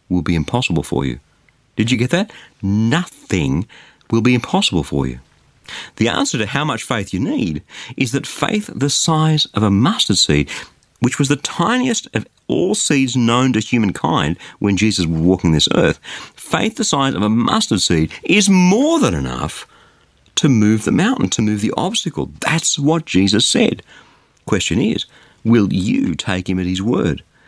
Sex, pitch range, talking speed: male, 95-145 Hz, 175 wpm